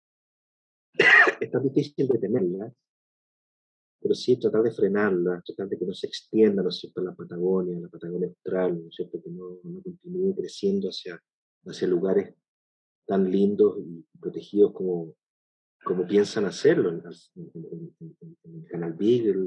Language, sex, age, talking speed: Spanish, male, 40-59, 155 wpm